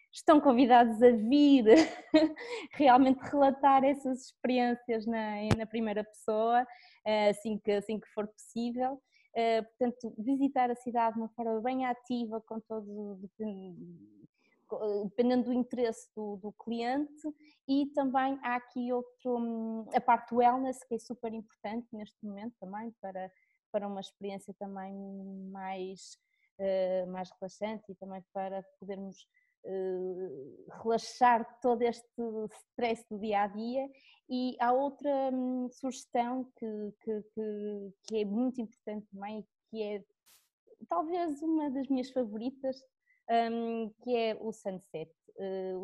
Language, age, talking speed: Portuguese, 20-39, 125 wpm